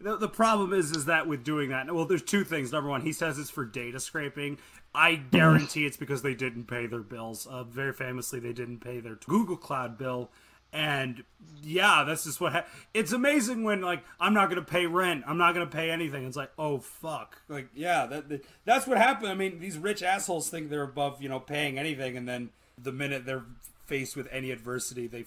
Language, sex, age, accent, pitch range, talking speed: English, male, 30-49, American, 130-170 Hz, 225 wpm